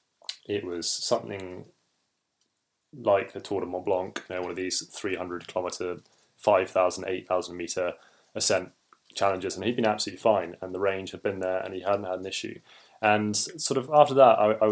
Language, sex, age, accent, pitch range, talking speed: English, male, 20-39, British, 95-115 Hz, 185 wpm